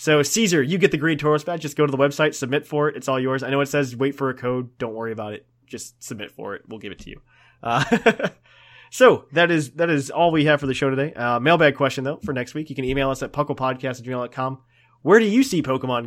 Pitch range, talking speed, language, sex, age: 125-145 Hz, 265 wpm, English, male, 20-39